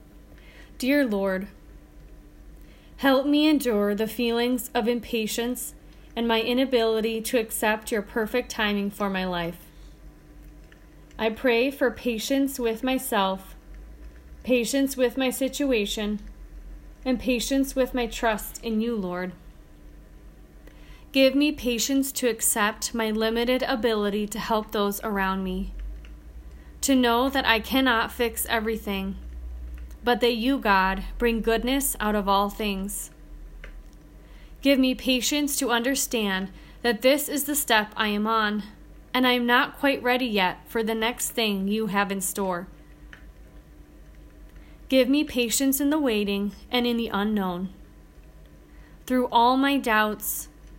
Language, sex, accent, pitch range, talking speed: English, female, American, 195-250 Hz, 130 wpm